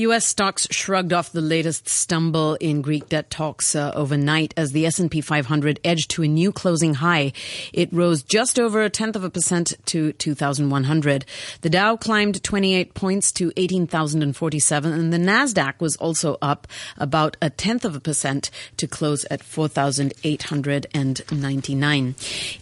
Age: 30-49